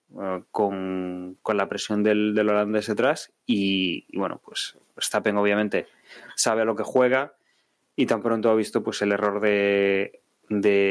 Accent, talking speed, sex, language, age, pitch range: Spanish, 160 wpm, male, Spanish, 20-39, 105-120 Hz